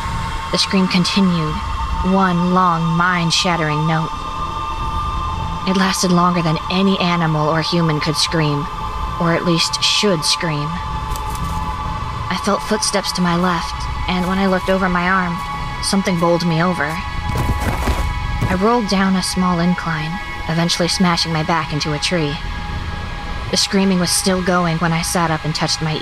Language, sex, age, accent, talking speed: English, female, 20-39, American, 150 wpm